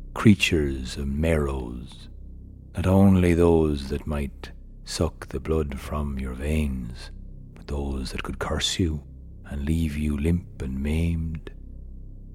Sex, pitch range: male, 70-90 Hz